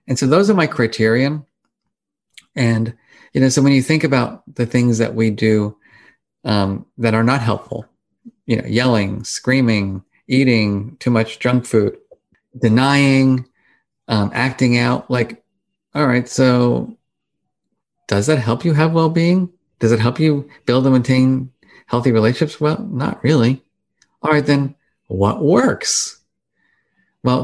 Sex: male